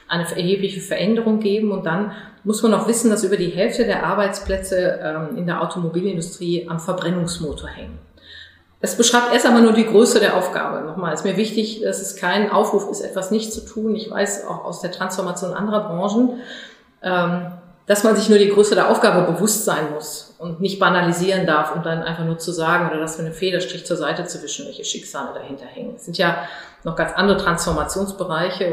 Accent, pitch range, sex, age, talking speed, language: German, 165-205 Hz, female, 30-49, 195 wpm, German